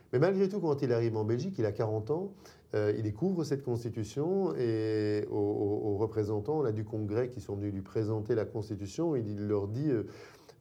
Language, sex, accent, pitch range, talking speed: French, male, French, 105-130 Hz, 210 wpm